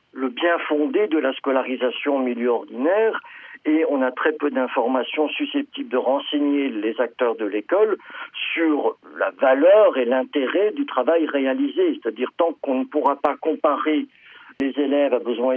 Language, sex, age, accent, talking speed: French, male, 50-69, French, 155 wpm